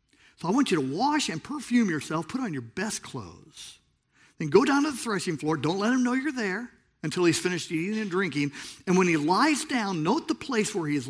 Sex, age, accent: male, 50-69, American